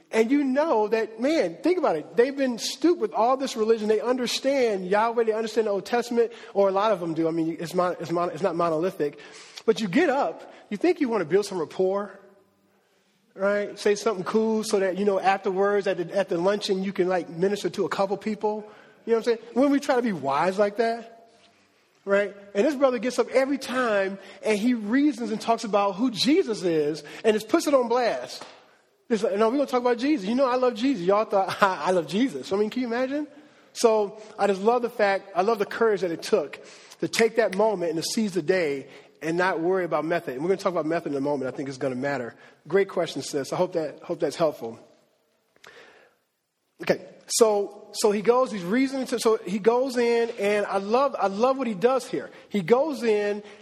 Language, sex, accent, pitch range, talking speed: English, male, American, 195-245 Hz, 225 wpm